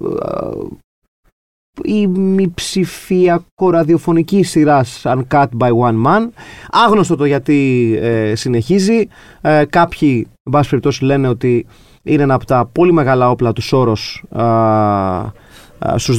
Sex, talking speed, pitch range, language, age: male, 100 wpm, 120-165 Hz, Greek, 30-49